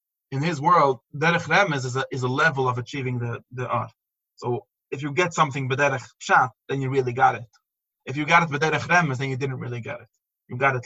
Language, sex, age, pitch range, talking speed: English, male, 20-39, 125-155 Hz, 230 wpm